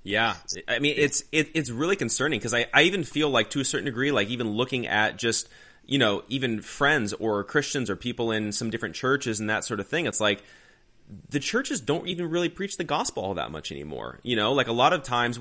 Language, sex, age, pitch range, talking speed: English, male, 30-49, 105-130 Hz, 240 wpm